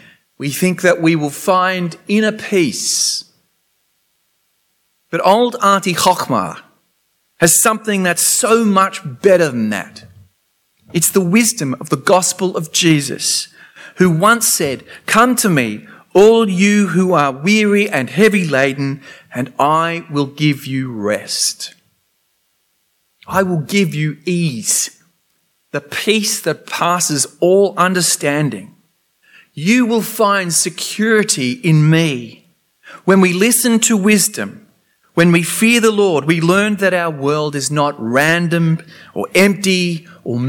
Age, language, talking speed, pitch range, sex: 40-59, English, 125 wpm, 150-205 Hz, male